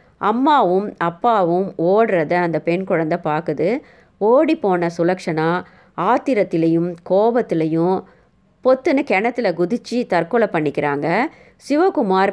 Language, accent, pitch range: Tamil, native, 165-210 Hz